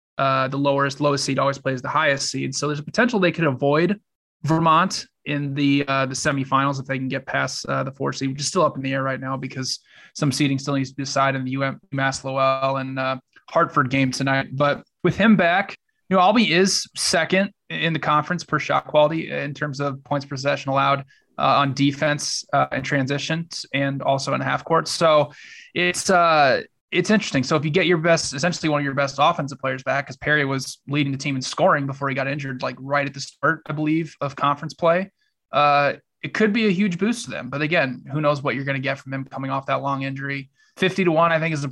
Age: 20-39